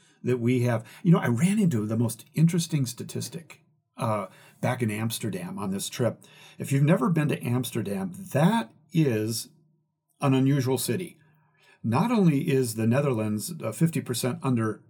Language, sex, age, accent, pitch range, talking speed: English, male, 50-69, American, 120-165 Hz, 150 wpm